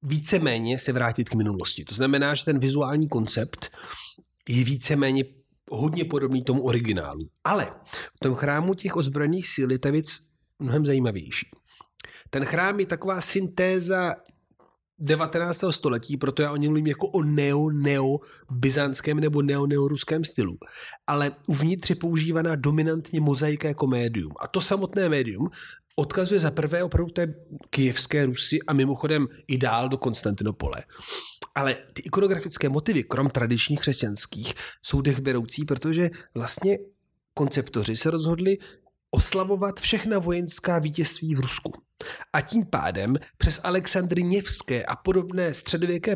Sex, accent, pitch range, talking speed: male, native, 135-175 Hz, 130 wpm